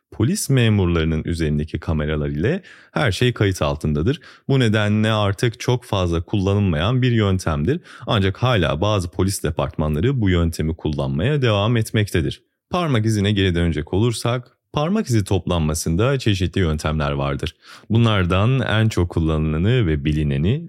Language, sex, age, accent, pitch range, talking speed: Turkish, male, 30-49, native, 80-120 Hz, 130 wpm